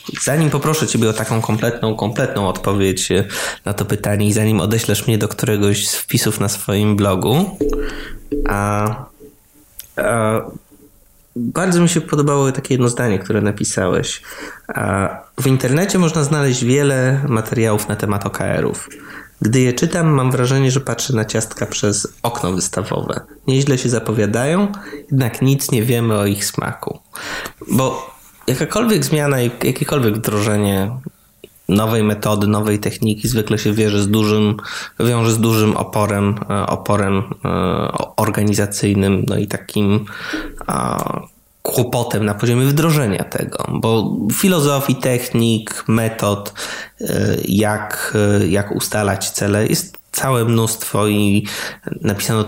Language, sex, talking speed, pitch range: Polish, male, 120 wpm, 105-130 Hz